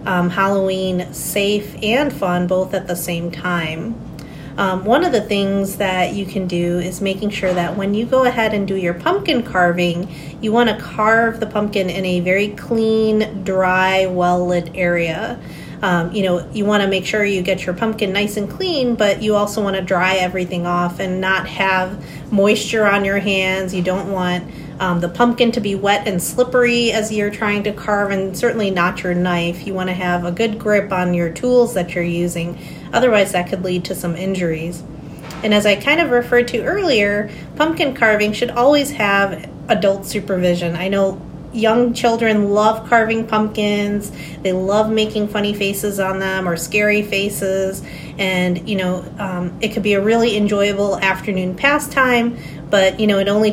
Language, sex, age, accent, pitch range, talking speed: English, female, 30-49, American, 180-210 Hz, 185 wpm